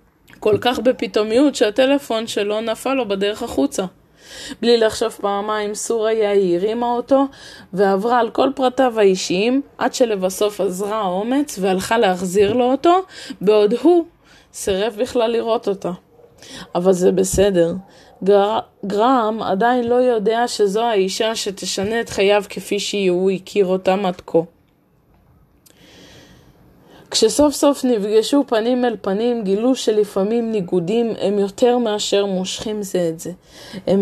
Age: 20-39